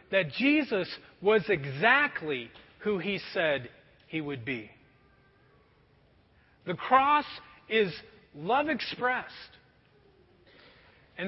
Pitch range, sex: 195-290 Hz, male